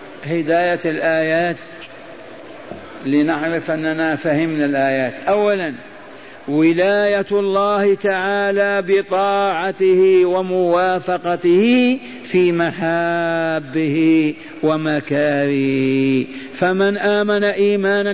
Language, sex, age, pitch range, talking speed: Arabic, male, 50-69, 165-200 Hz, 60 wpm